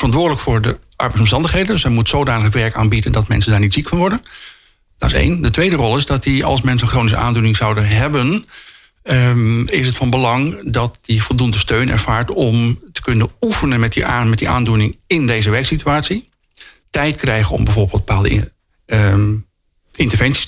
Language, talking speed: Dutch, 185 wpm